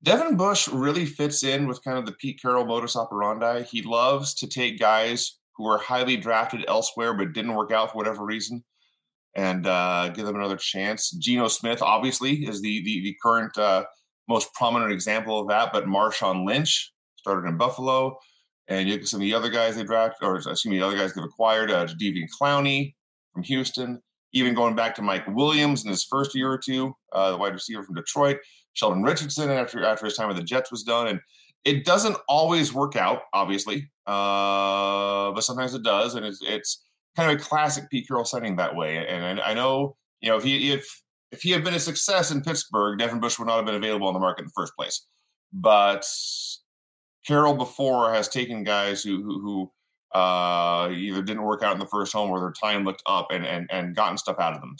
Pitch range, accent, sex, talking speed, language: 100-130 Hz, American, male, 210 wpm, English